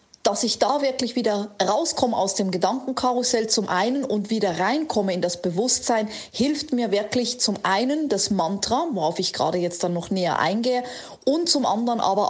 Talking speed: 175 wpm